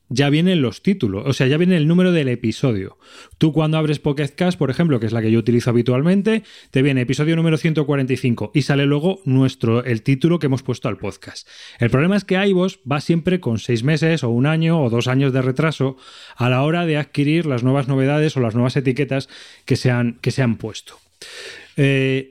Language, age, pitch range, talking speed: Spanish, 20-39, 125-160 Hz, 205 wpm